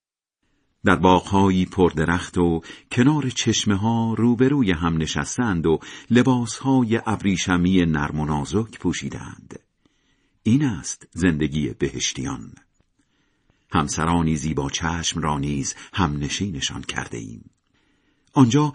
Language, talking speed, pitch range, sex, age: Persian, 95 wpm, 80-120 Hz, male, 50-69